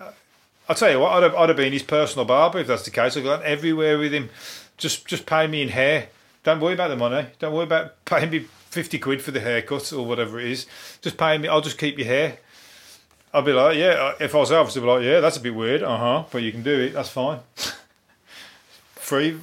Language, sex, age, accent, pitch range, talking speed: English, male, 40-59, British, 120-150 Hz, 250 wpm